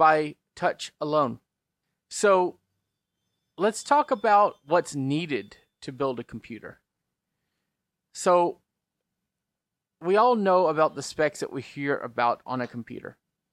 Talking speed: 120 wpm